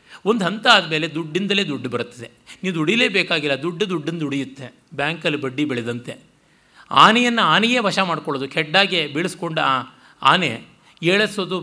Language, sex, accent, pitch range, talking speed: Kannada, male, native, 140-190 Hz, 115 wpm